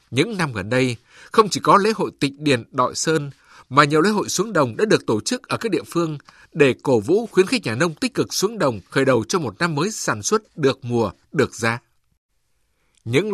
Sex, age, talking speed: male, 60-79, 230 wpm